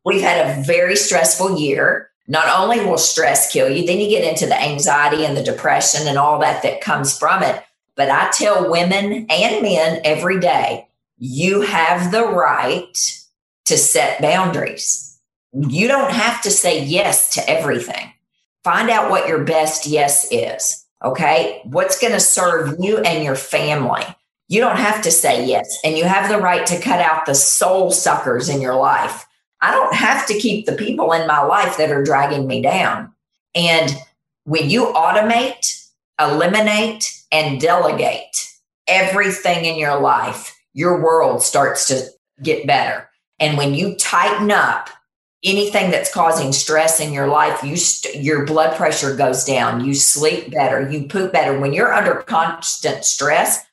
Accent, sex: American, female